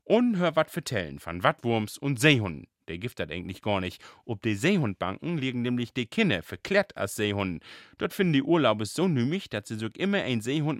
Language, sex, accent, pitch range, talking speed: German, male, German, 110-175 Hz, 200 wpm